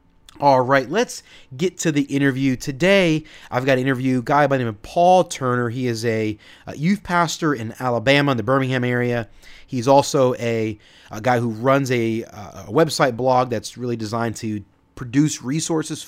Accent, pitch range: American, 115-145 Hz